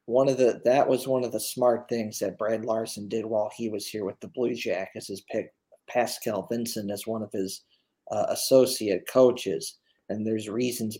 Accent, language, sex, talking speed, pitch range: American, English, male, 195 wpm, 110-130 Hz